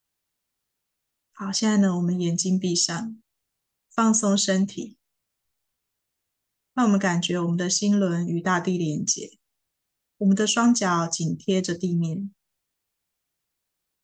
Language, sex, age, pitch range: Chinese, female, 20-39, 175-200 Hz